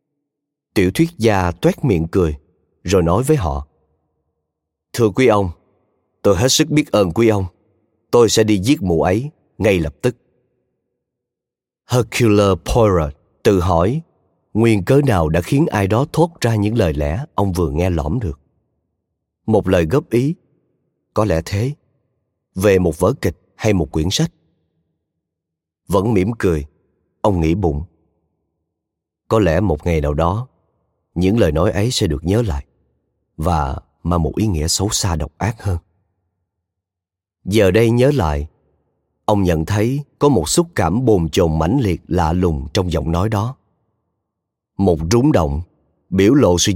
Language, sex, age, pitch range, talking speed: Vietnamese, male, 30-49, 85-110 Hz, 155 wpm